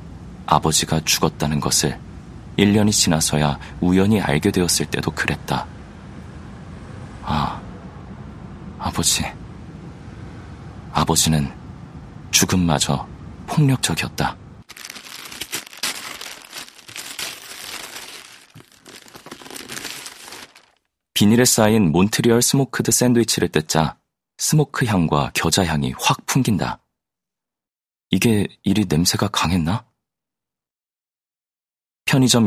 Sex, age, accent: male, 40-59, native